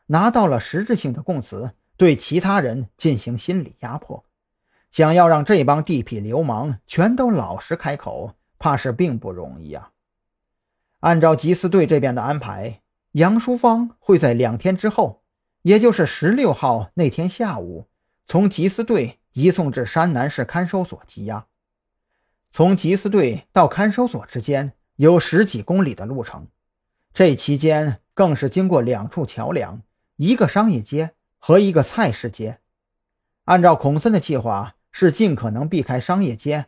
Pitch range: 120-190 Hz